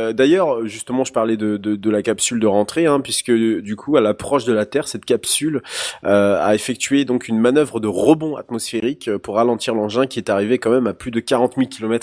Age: 20-39